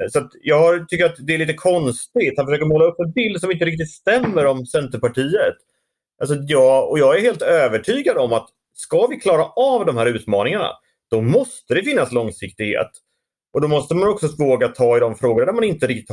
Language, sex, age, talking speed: Swedish, male, 30-49, 205 wpm